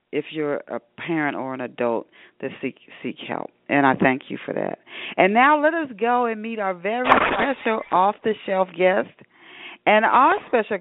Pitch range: 175-235 Hz